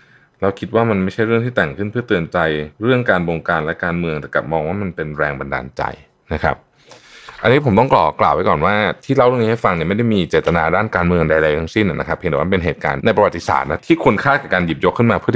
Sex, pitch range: male, 80-115 Hz